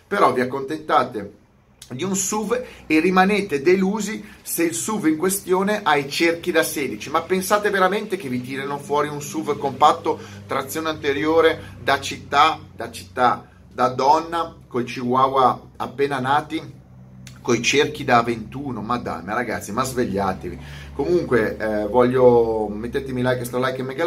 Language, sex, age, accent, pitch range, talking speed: Italian, male, 30-49, native, 115-170 Hz, 150 wpm